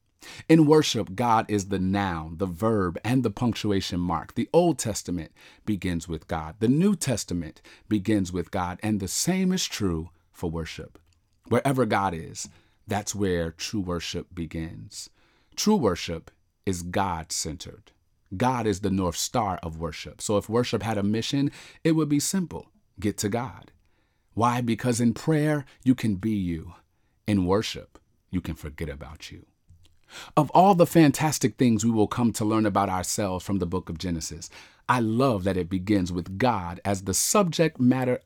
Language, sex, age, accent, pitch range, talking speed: English, male, 40-59, American, 90-125 Hz, 165 wpm